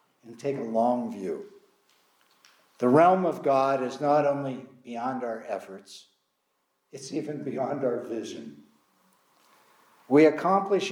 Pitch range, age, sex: 135-175 Hz, 60-79, male